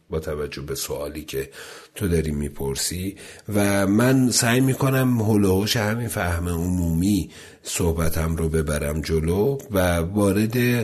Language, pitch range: Persian, 85-110 Hz